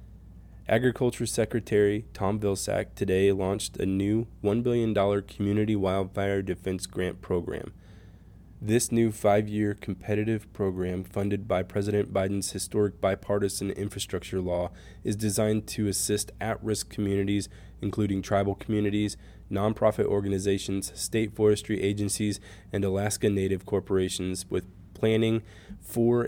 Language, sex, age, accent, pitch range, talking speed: English, male, 20-39, American, 95-105 Hz, 110 wpm